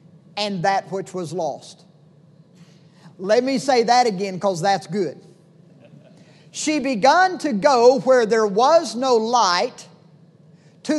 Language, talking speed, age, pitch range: English, 125 wpm, 50-69, 180-265 Hz